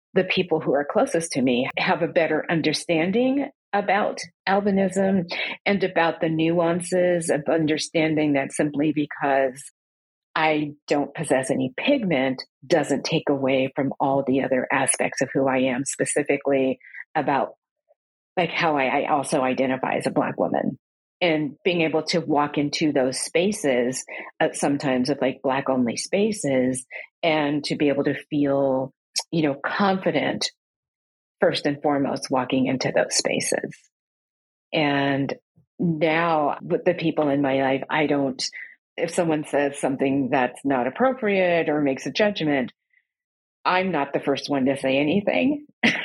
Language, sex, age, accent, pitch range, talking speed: English, female, 40-59, American, 135-175 Hz, 145 wpm